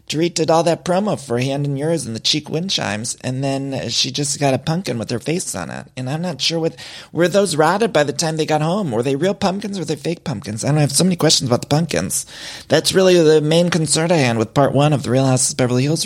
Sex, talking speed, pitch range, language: male, 290 wpm, 125-160 Hz, English